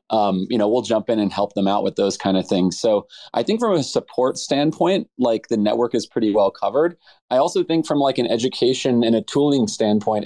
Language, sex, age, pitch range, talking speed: English, male, 20-39, 100-130 Hz, 235 wpm